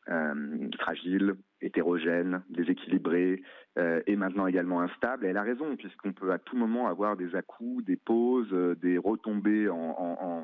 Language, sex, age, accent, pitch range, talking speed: French, male, 30-49, French, 90-110 Hz, 165 wpm